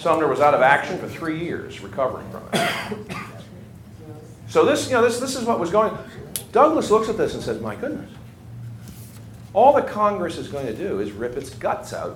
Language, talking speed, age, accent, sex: English, 205 wpm, 40-59, American, male